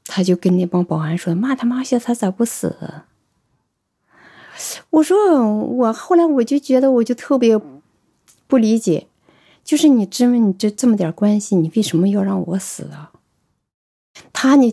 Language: Chinese